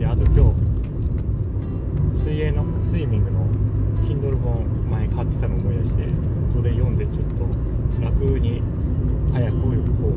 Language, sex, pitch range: Japanese, male, 90-115 Hz